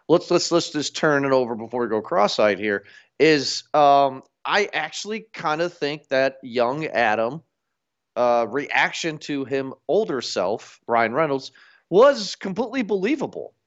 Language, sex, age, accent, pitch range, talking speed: English, male, 40-59, American, 120-155 Hz, 145 wpm